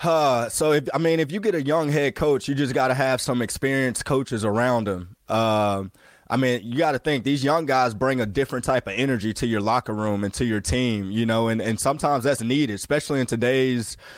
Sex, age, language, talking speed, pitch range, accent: male, 20-39, English, 235 wpm, 120-145 Hz, American